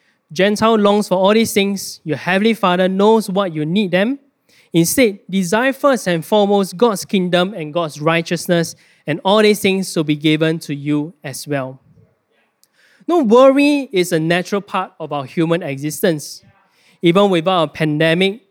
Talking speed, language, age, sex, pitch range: 160 wpm, English, 20-39, male, 165-215 Hz